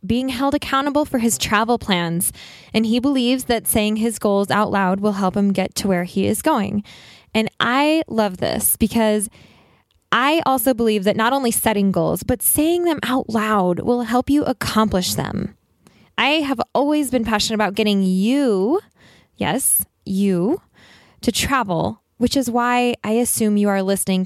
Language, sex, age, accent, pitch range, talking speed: English, female, 10-29, American, 195-255 Hz, 170 wpm